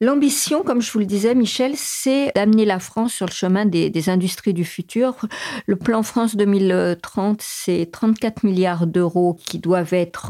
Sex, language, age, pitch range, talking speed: female, French, 50-69, 175-210 Hz, 175 wpm